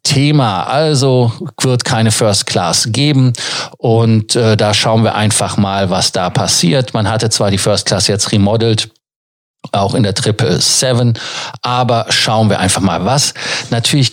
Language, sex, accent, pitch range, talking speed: German, male, German, 110-130 Hz, 155 wpm